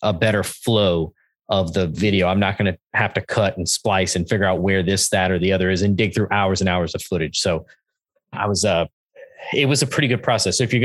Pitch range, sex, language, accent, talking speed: 95-115 Hz, male, English, American, 255 wpm